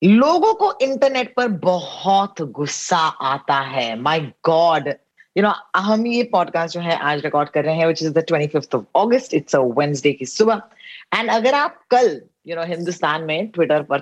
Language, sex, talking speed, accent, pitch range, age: Hindi, female, 95 wpm, native, 165-225 Hz, 20-39